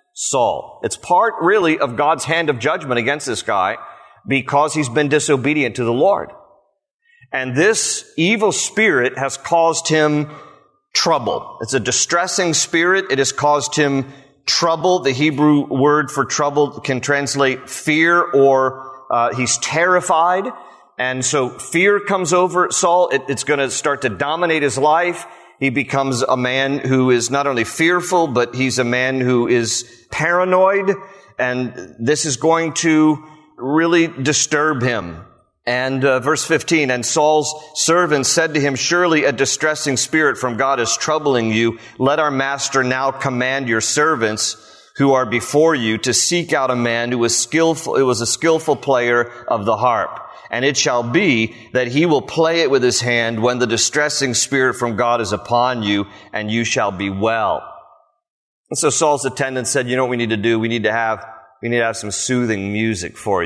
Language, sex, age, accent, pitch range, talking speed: English, male, 40-59, American, 125-155 Hz, 170 wpm